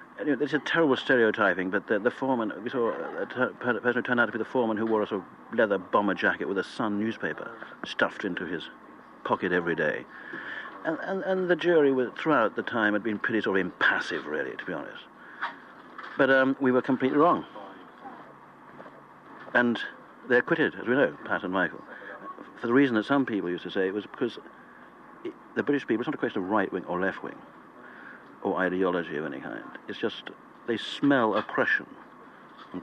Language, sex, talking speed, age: English, male, 200 wpm, 60-79